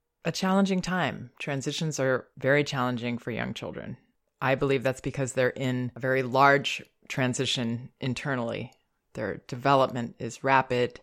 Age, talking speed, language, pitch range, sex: 30-49, 135 wpm, English, 125-150 Hz, female